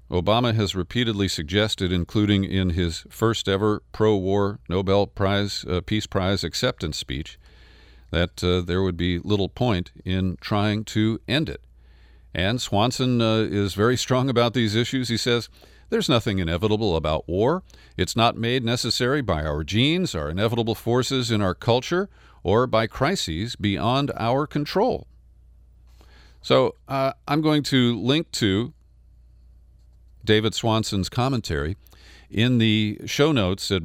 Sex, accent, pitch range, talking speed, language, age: male, American, 90-120 Hz, 140 wpm, English, 50-69